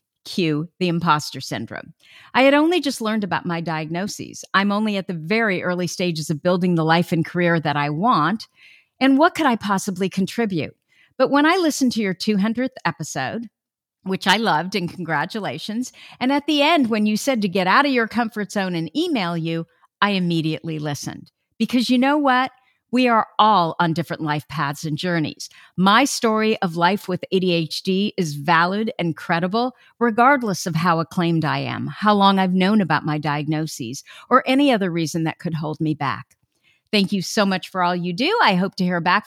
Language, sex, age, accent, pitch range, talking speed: English, female, 50-69, American, 170-235 Hz, 190 wpm